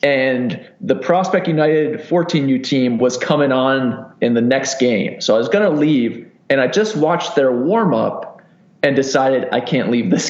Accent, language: American, English